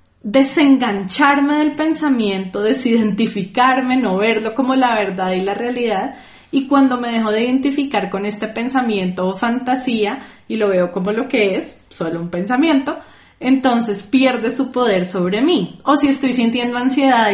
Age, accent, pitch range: 20-39, Colombian, 205-255 Hz